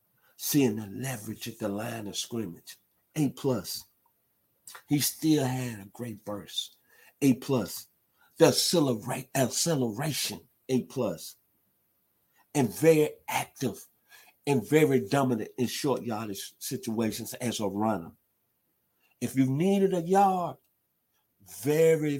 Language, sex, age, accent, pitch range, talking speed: English, male, 50-69, American, 105-140 Hz, 110 wpm